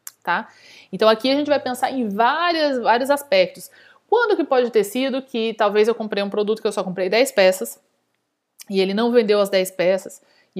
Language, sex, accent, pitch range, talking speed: Portuguese, female, Brazilian, 190-235 Hz, 195 wpm